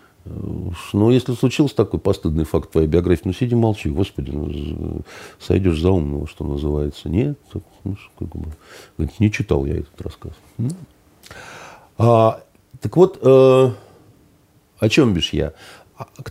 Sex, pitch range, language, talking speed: male, 80-120 Hz, Russian, 120 wpm